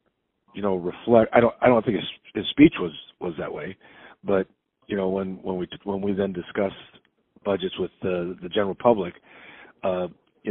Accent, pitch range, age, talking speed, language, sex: American, 85-100 Hz, 50-69, 190 wpm, English, male